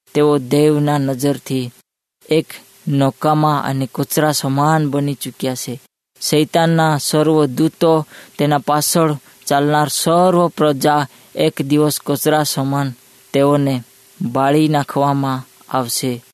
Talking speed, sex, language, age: 85 wpm, female, Hindi, 20-39